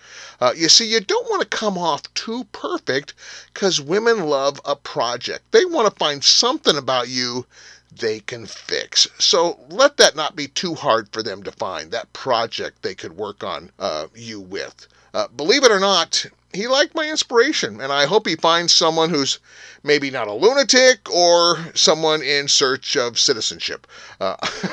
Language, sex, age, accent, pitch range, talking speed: English, male, 40-59, American, 135-205 Hz, 175 wpm